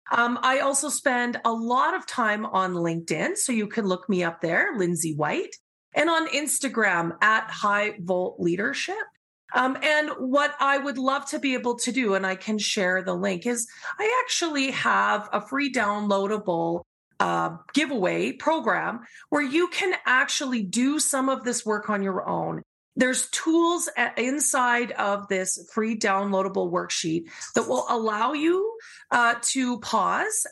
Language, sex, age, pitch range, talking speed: English, female, 40-59, 195-285 Hz, 150 wpm